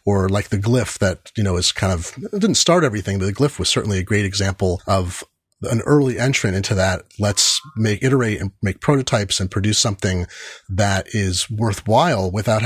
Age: 30-49